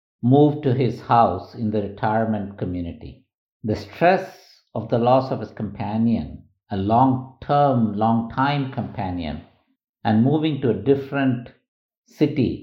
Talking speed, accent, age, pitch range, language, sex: 125 wpm, Indian, 50-69, 105-130 Hz, English, male